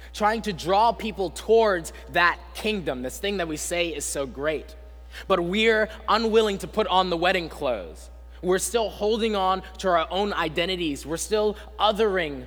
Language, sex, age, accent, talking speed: English, male, 20-39, American, 170 wpm